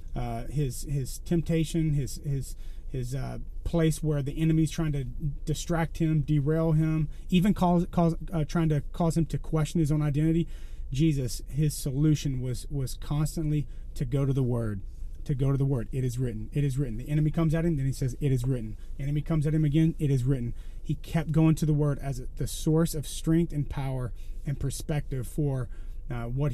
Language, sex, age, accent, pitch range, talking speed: English, male, 30-49, American, 135-165 Hz, 205 wpm